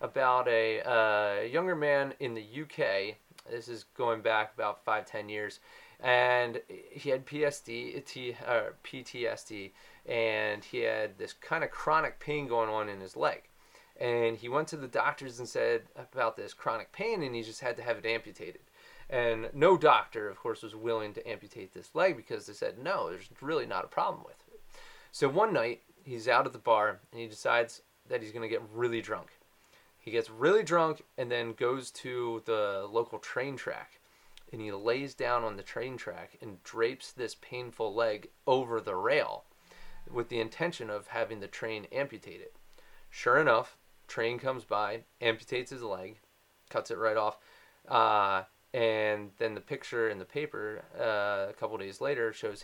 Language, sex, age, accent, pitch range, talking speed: English, male, 30-49, American, 110-145 Hz, 180 wpm